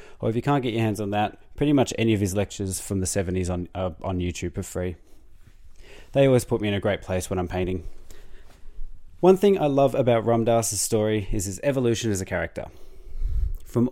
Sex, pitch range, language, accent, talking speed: male, 95-120 Hz, English, Australian, 215 wpm